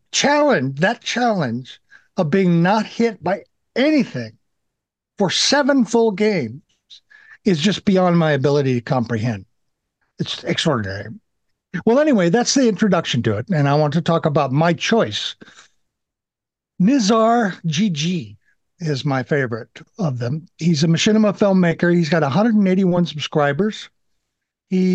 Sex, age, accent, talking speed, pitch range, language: male, 60-79, American, 130 wpm, 145-205 Hz, English